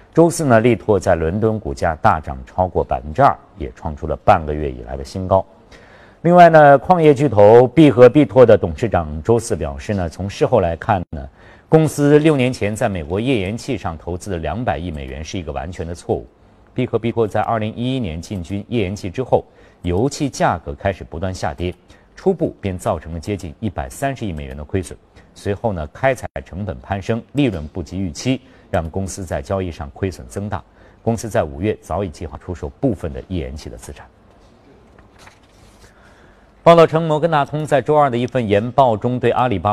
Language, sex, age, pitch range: Chinese, male, 50-69, 85-115 Hz